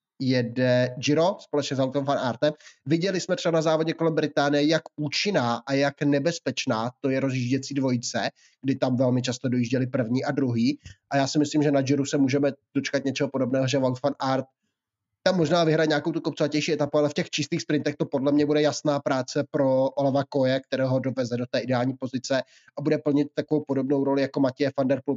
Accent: native